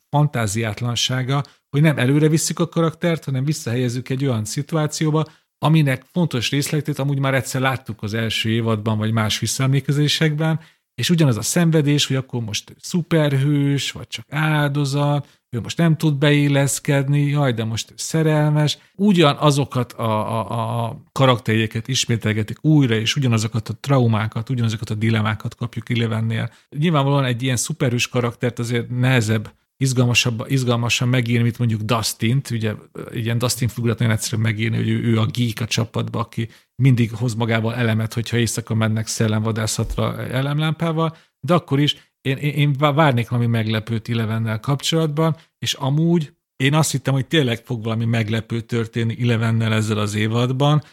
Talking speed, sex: 145 wpm, male